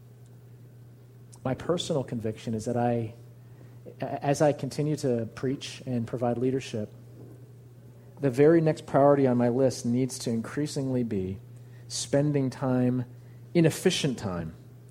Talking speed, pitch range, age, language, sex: 115 wpm, 120-140 Hz, 40-59, English, male